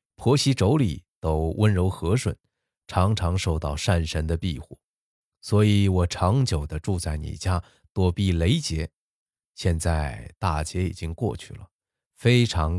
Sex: male